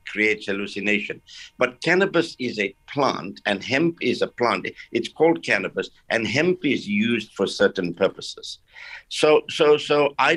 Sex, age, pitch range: male, 60-79, 100-130 Hz